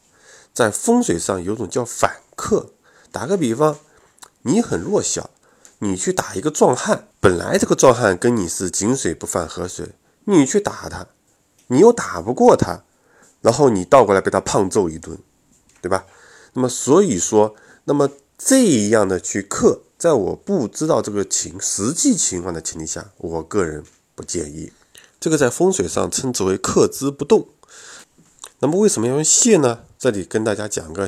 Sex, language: male, Chinese